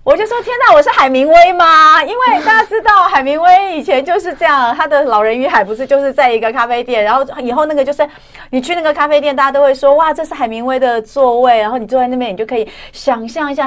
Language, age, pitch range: Chinese, 30-49, 170-270 Hz